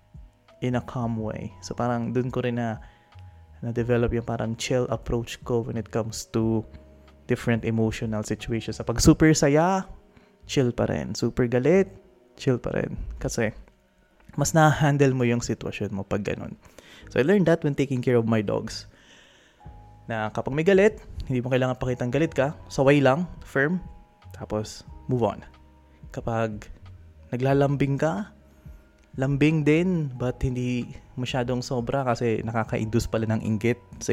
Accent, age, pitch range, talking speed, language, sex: native, 20-39, 105-125 Hz, 150 wpm, Filipino, male